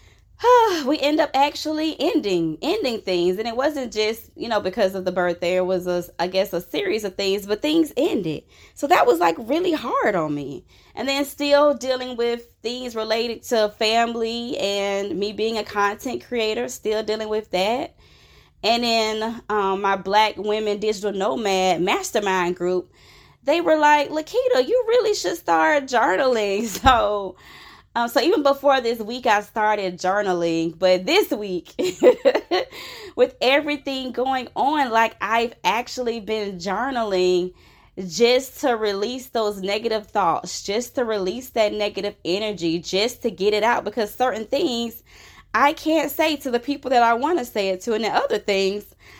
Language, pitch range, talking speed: English, 195-270 Hz, 165 wpm